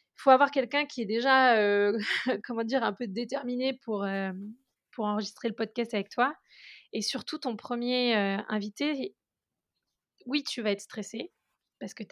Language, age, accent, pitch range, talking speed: French, 30-49, French, 195-245 Hz, 175 wpm